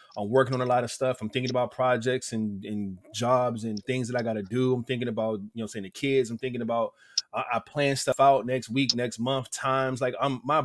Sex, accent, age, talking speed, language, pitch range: male, American, 20-39, 255 wpm, English, 120-140 Hz